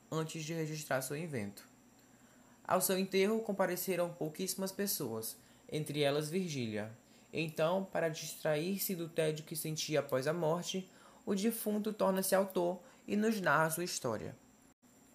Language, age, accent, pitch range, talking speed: Portuguese, 20-39, Brazilian, 155-190 Hz, 130 wpm